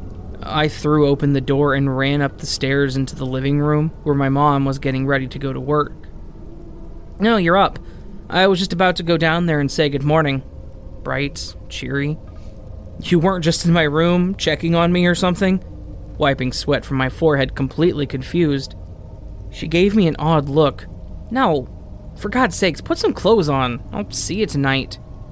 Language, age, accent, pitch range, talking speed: English, 20-39, American, 110-150 Hz, 180 wpm